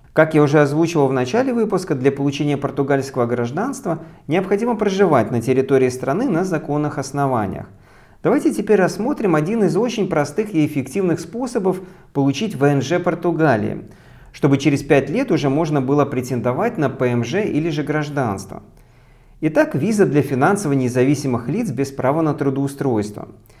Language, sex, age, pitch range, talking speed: Russian, male, 40-59, 130-175 Hz, 140 wpm